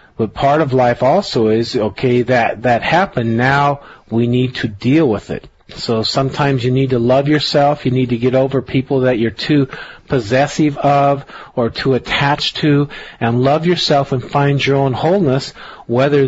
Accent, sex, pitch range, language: American, male, 125-155 Hz, English